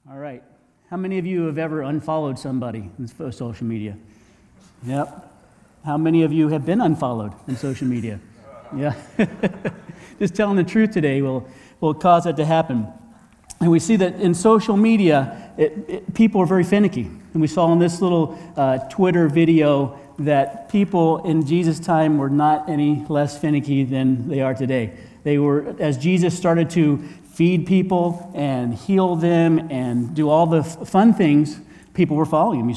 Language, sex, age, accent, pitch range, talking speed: English, male, 40-59, American, 140-175 Hz, 170 wpm